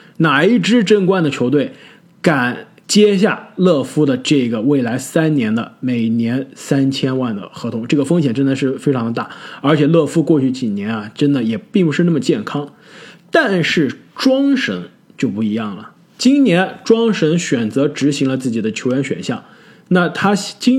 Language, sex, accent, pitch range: Chinese, male, native, 140-210 Hz